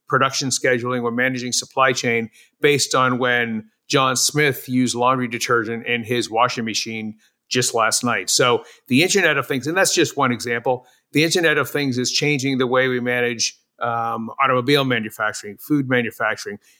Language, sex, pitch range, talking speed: English, male, 115-135 Hz, 165 wpm